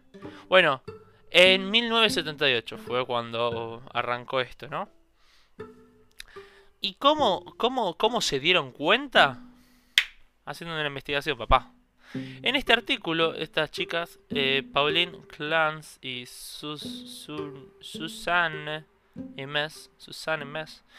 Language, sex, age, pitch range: Spanish, male, 20-39, 150-230 Hz